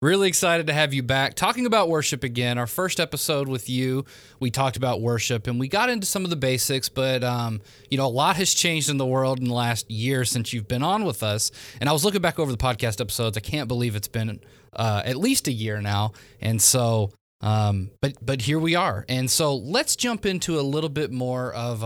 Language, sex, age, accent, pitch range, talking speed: English, male, 20-39, American, 110-145 Hz, 235 wpm